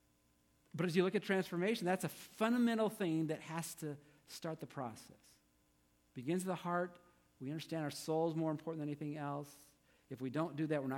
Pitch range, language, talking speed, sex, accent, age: 110-175 Hz, English, 200 wpm, male, American, 50-69